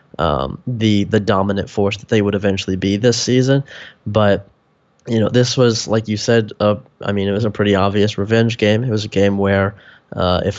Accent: American